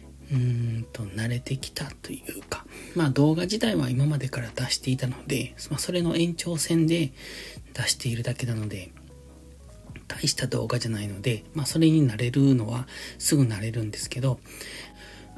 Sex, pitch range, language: male, 115-135 Hz, Japanese